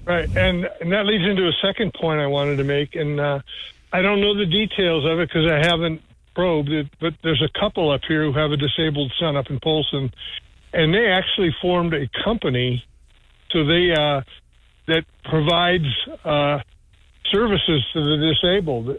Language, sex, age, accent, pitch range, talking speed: English, male, 60-79, American, 140-170 Hz, 175 wpm